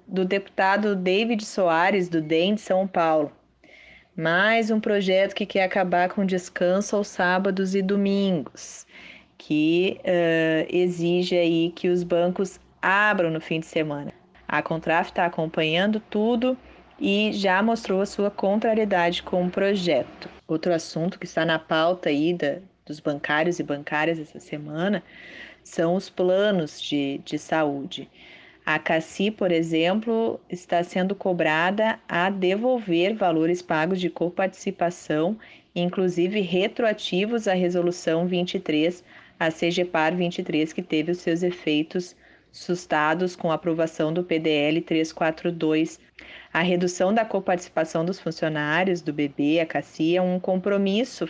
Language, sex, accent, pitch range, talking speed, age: Portuguese, female, Brazilian, 165-195 Hz, 130 wpm, 30-49